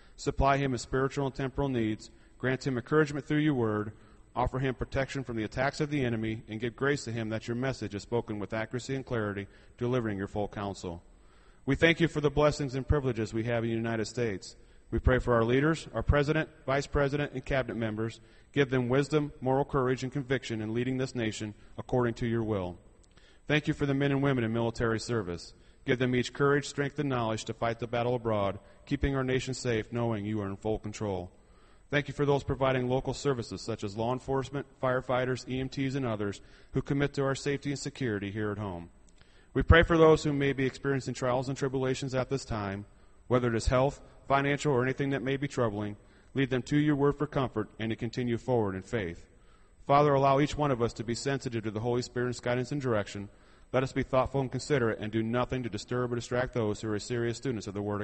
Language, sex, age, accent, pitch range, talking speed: English, male, 30-49, American, 110-135 Hz, 220 wpm